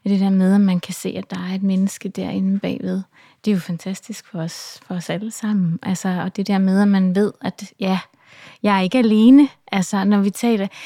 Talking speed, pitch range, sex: 230 wpm, 195-225 Hz, female